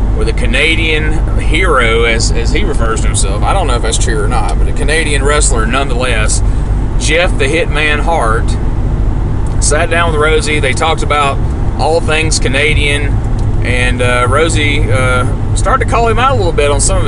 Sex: male